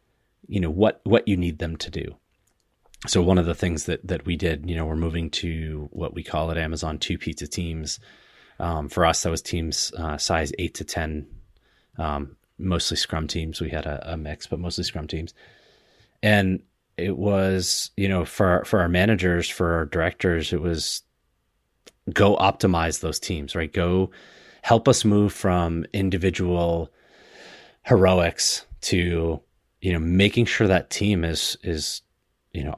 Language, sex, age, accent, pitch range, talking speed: English, male, 30-49, American, 80-100 Hz, 170 wpm